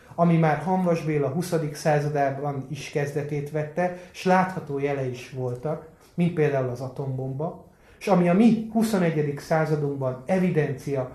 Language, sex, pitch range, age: Hungarian, male, 130-180 Hz, 30-49